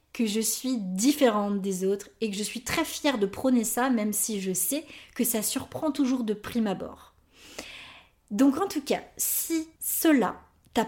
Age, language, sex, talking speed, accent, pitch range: 20-39, French, female, 180 wpm, French, 205-265 Hz